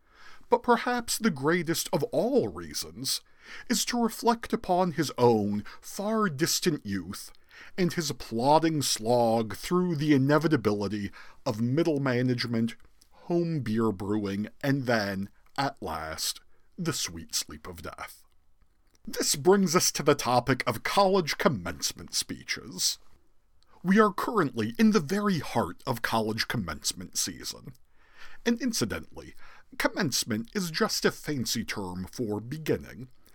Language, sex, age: English, male, 50-69